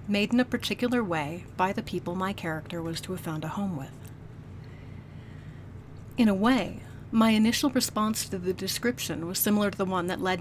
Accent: American